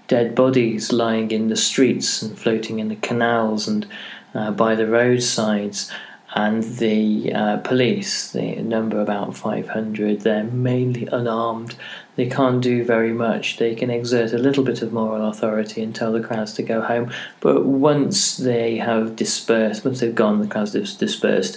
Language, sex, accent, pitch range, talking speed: English, male, British, 110-125 Hz, 165 wpm